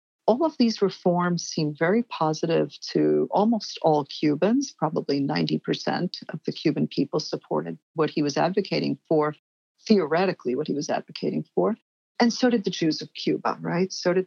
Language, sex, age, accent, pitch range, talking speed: English, female, 50-69, American, 150-195 Hz, 165 wpm